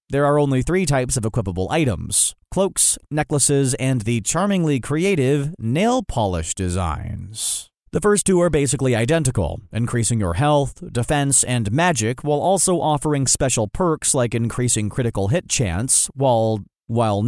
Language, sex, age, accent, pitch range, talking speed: English, male, 30-49, American, 115-155 Hz, 140 wpm